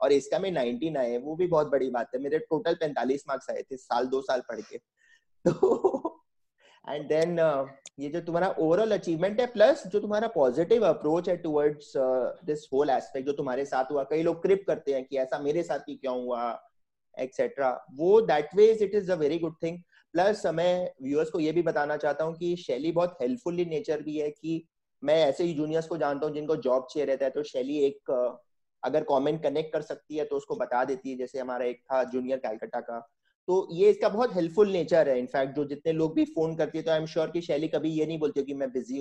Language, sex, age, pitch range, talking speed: English, male, 30-49, 140-180 Hz, 180 wpm